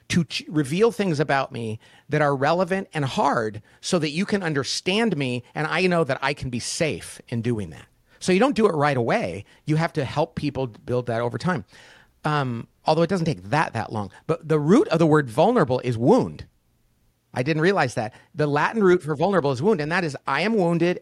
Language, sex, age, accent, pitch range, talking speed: English, male, 40-59, American, 130-180 Hz, 220 wpm